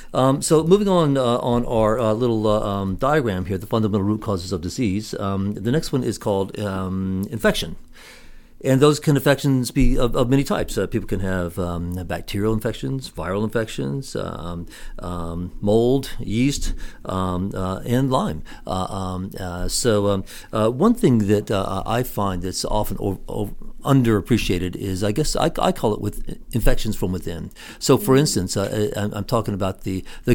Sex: male